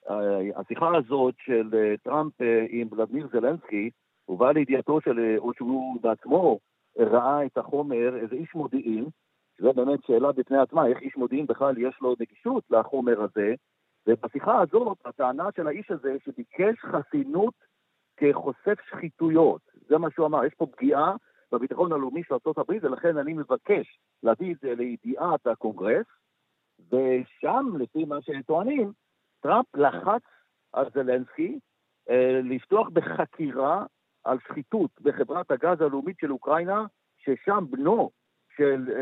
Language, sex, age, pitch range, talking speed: Hebrew, male, 50-69, 125-175 Hz, 125 wpm